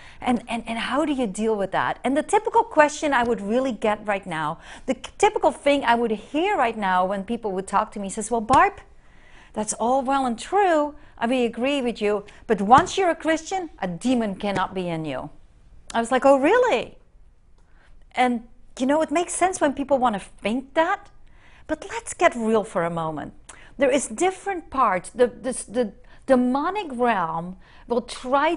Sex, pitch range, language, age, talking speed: female, 210-285 Hz, English, 50-69, 195 wpm